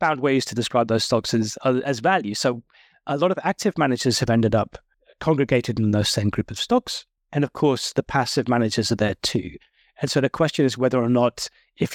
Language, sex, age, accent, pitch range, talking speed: English, male, 30-49, British, 110-135 Hz, 215 wpm